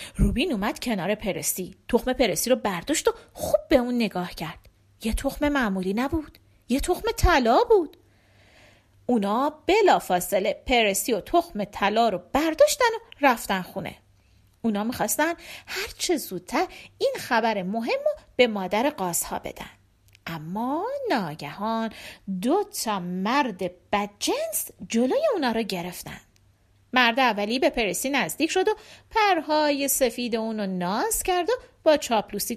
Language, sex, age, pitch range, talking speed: Persian, female, 40-59, 205-330 Hz, 130 wpm